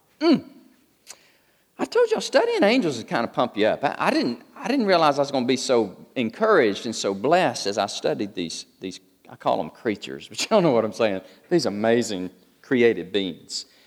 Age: 40-59